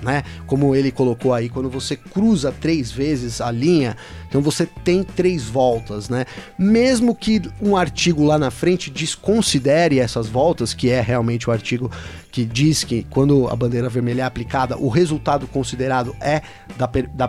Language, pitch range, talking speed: Portuguese, 130-170 Hz, 165 wpm